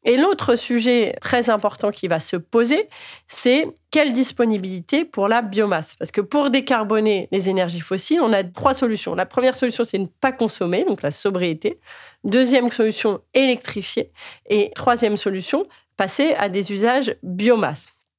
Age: 30-49